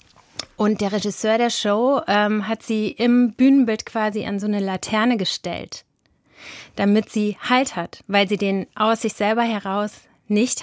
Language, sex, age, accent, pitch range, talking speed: German, female, 30-49, German, 200-230 Hz, 160 wpm